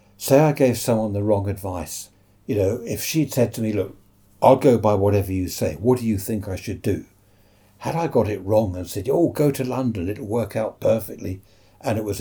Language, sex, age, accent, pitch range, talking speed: English, male, 60-79, British, 100-130 Hz, 225 wpm